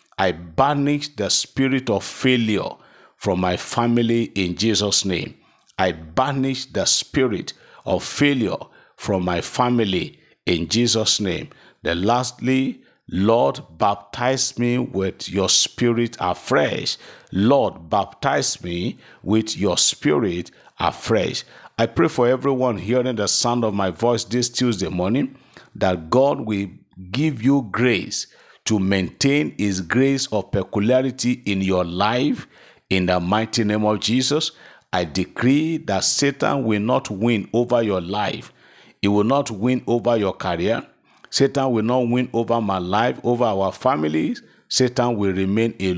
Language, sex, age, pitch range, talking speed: English, male, 50-69, 100-130 Hz, 135 wpm